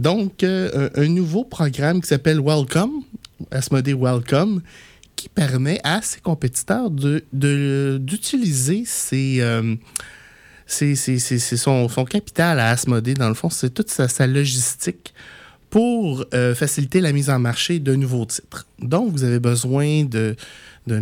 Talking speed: 155 wpm